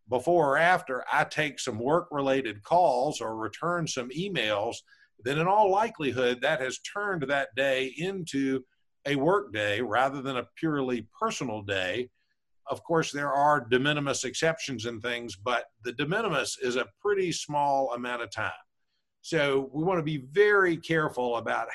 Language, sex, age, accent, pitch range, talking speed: English, male, 50-69, American, 125-160 Hz, 165 wpm